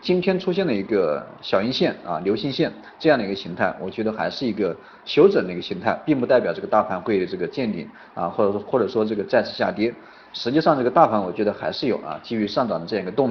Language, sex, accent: Chinese, male, native